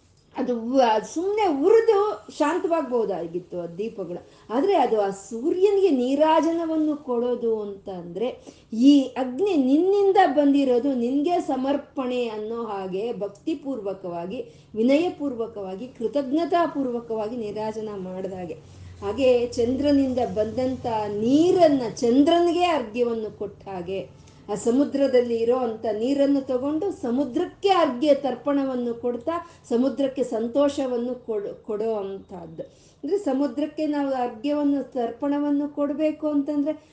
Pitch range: 220-290 Hz